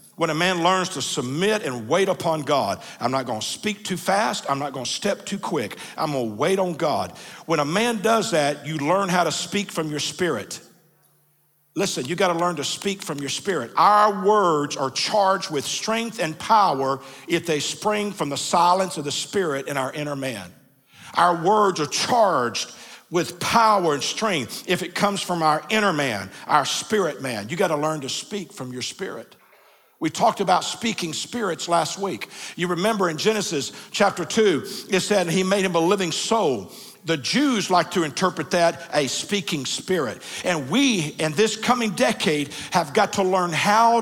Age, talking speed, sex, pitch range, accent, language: 50-69, 185 wpm, male, 155-210 Hz, American, English